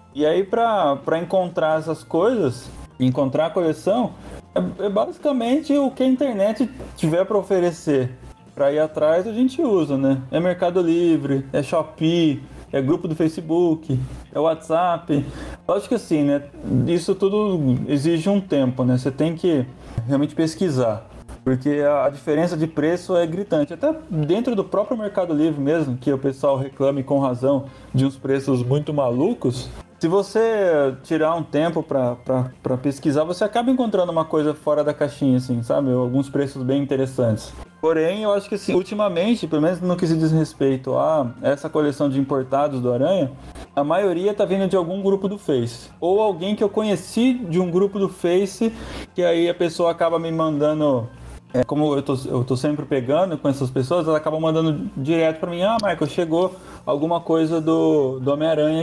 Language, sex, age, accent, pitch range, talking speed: Portuguese, male, 20-39, Brazilian, 140-185 Hz, 175 wpm